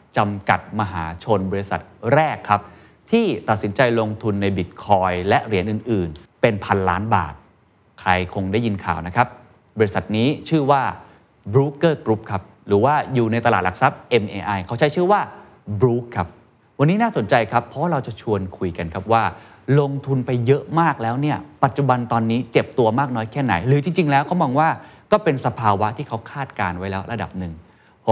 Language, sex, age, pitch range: Thai, male, 20-39, 95-135 Hz